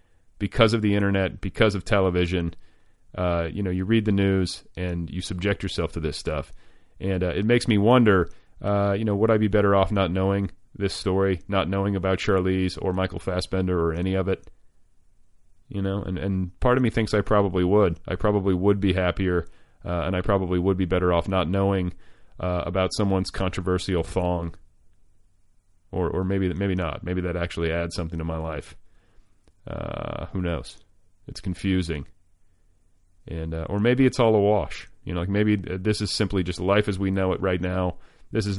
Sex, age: male, 30-49